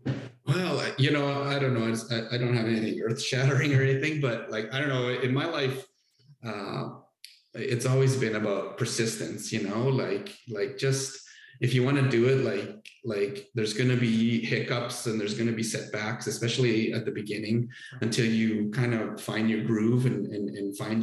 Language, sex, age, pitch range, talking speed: English, male, 30-49, 105-130 Hz, 195 wpm